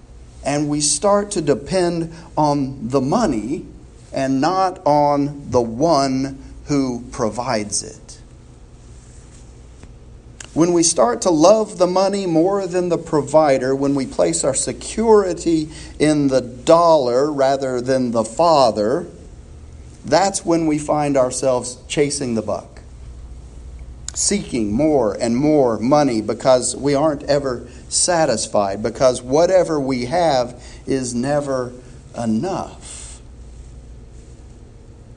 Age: 40-59